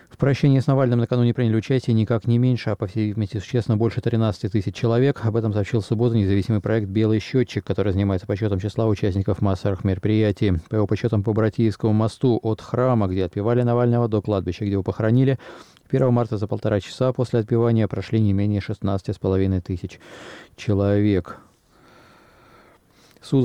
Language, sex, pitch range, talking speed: Russian, male, 100-120 Hz, 165 wpm